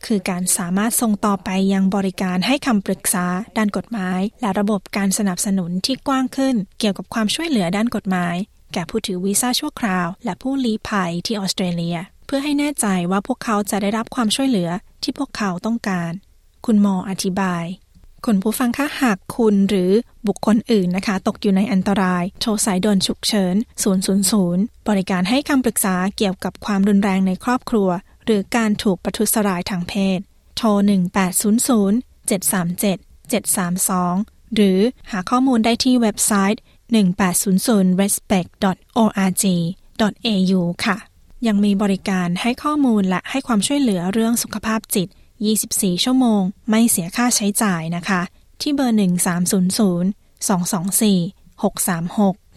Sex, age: female, 20-39